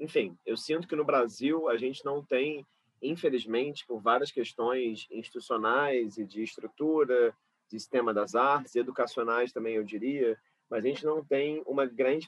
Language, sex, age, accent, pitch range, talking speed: Portuguese, male, 30-49, Brazilian, 115-150 Hz, 160 wpm